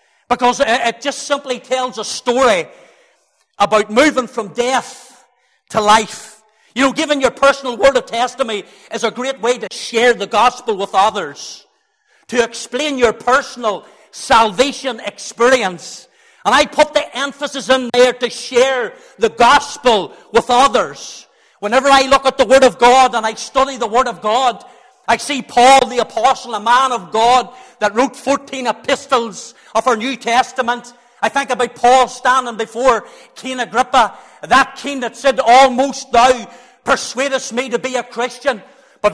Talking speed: 160 wpm